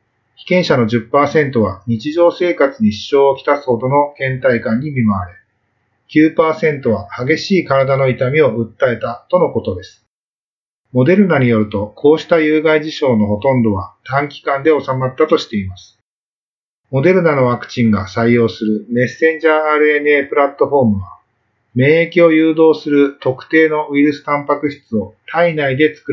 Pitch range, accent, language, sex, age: 110-150 Hz, native, Japanese, male, 40-59